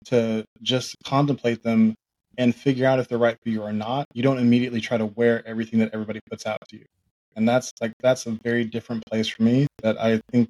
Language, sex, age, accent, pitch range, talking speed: English, male, 20-39, American, 110-125 Hz, 230 wpm